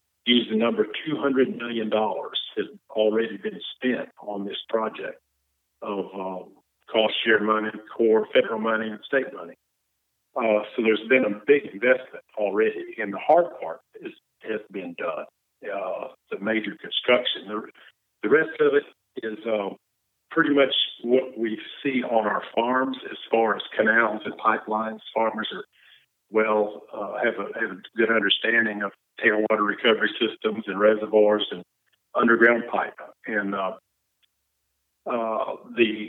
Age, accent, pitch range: 50-69, American, 105-150 Hz